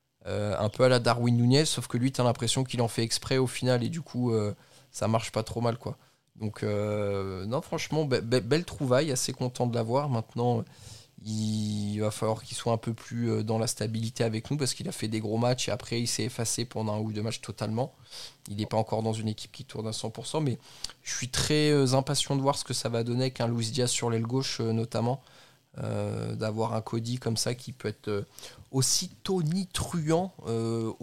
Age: 20-39